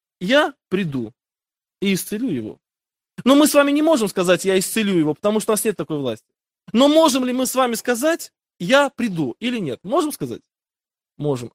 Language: Russian